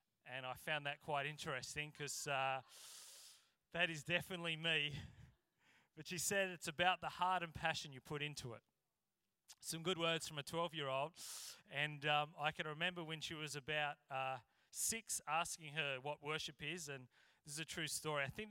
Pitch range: 150-190 Hz